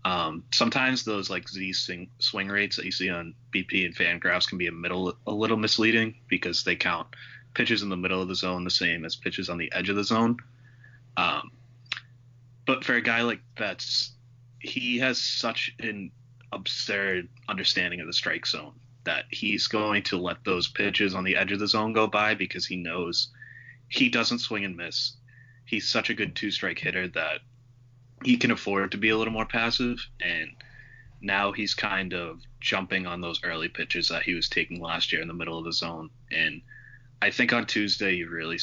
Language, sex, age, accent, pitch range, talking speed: English, male, 20-39, American, 95-120 Hz, 195 wpm